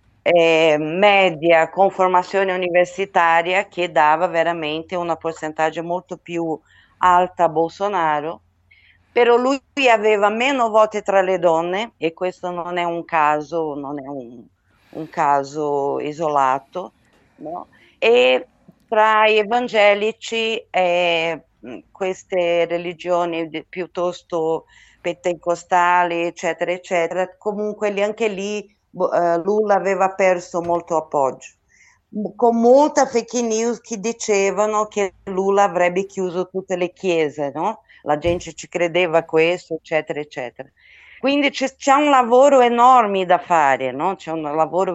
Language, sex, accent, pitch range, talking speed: Italian, female, native, 165-205 Hz, 115 wpm